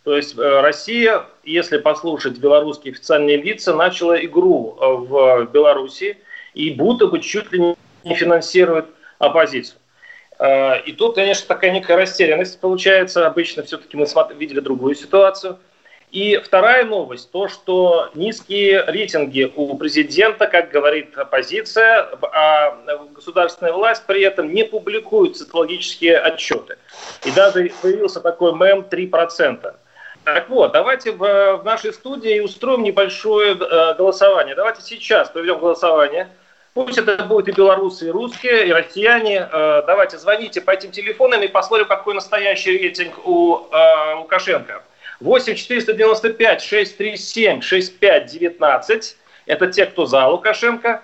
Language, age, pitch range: Russian, 30-49, 165-225 Hz